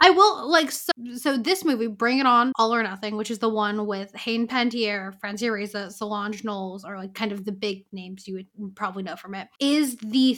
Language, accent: English, American